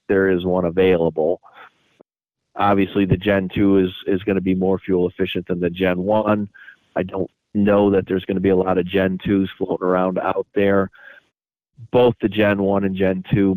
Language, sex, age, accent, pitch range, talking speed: English, male, 40-59, American, 90-100 Hz, 195 wpm